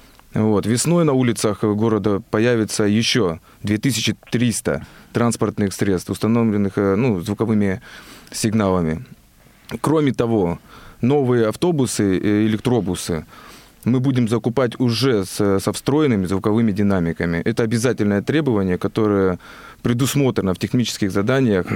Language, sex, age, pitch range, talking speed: Russian, male, 20-39, 100-120 Hz, 95 wpm